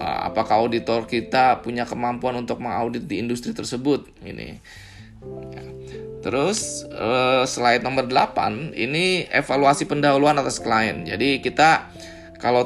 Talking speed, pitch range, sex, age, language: 110 wpm, 110-135 Hz, male, 20-39, Indonesian